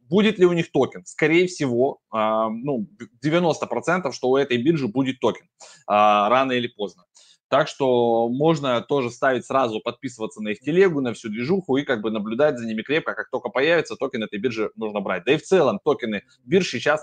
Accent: native